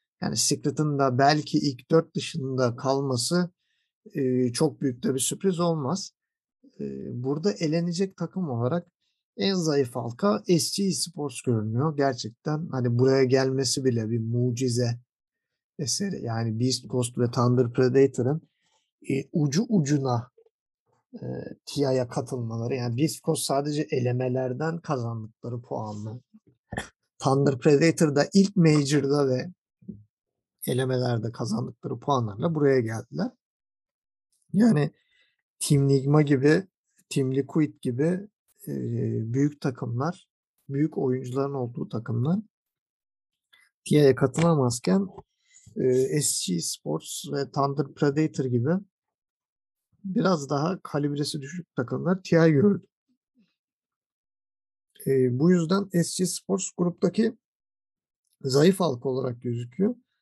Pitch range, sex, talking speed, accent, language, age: 130-175 Hz, male, 105 wpm, native, Turkish, 50-69